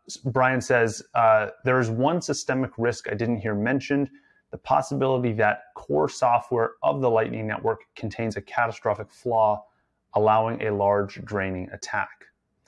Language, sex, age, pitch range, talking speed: English, male, 30-49, 100-120 Hz, 140 wpm